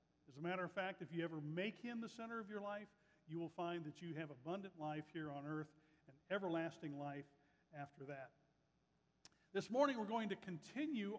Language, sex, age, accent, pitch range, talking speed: English, male, 50-69, American, 160-205 Hz, 200 wpm